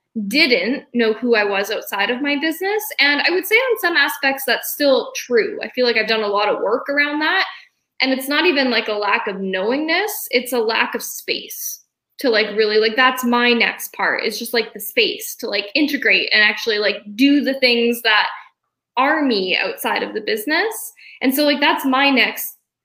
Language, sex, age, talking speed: English, female, 10-29, 205 wpm